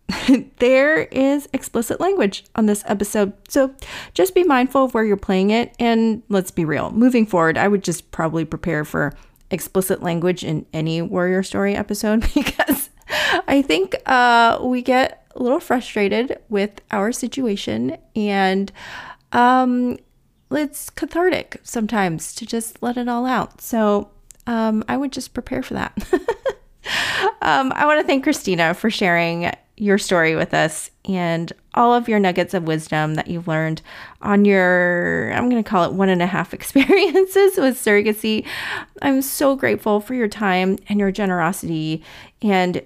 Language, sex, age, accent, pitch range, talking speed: English, female, 30-49, American, 185-250 Hz, 155 wpm